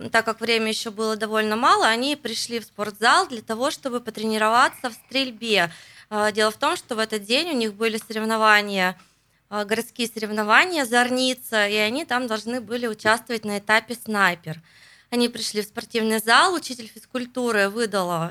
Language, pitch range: Russian, 210-255 Hz